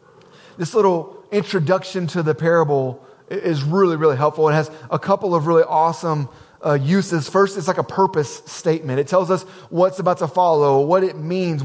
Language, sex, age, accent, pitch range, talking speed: English, male, 30-49, American, 155-190 Hz, 180 wpm